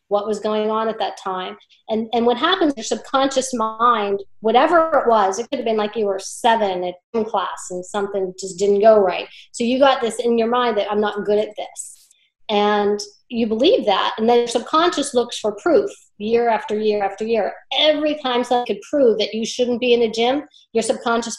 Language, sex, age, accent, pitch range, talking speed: English, female, 40-59, American, 205-250 Hz, 215 wpm